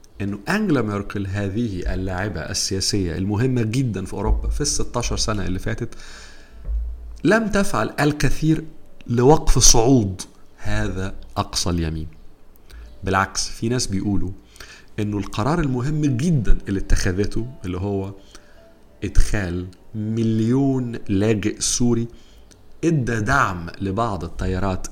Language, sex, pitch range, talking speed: English, male, 95-120 Hz, 105 wpm